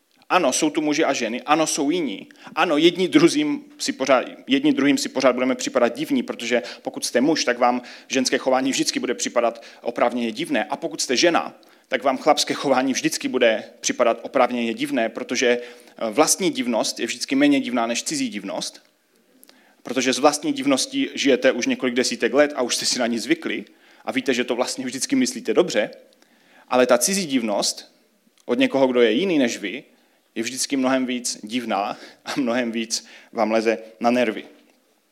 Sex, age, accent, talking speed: male, 30-49, native, 175 wpm